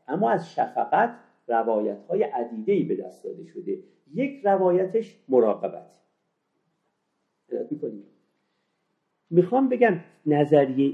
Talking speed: 95 wpm